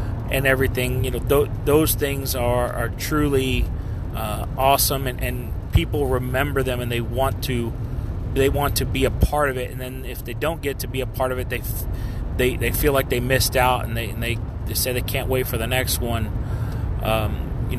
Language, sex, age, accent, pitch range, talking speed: English, male, 30-49, American, 110-130 Hz, 220 wpm